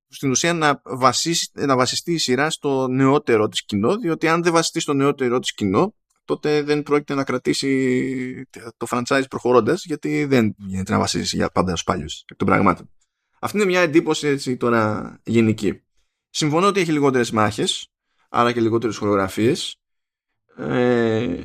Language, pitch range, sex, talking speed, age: Greek, 110-145 Hz, male, 160 wpm, 20-39